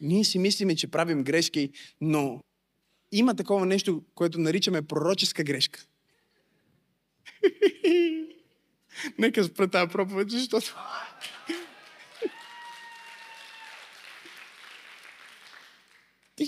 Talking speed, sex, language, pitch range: 70 wpm, male, Bulgarian, 170-245 Hz